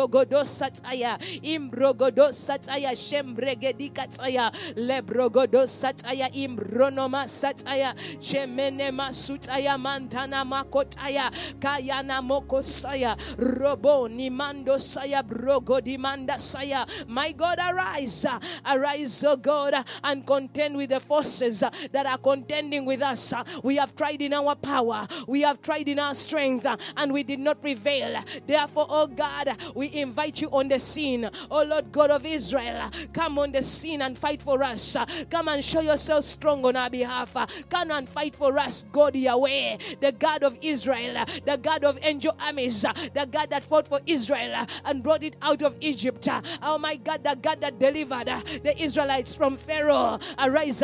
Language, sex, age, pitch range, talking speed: English, female, 20-39, 270-295 Hz, 150 wpm